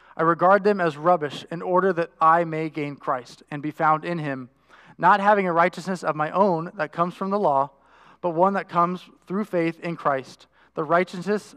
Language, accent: English, American